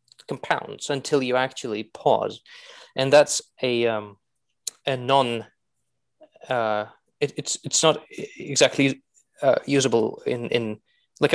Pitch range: 120-150 Hz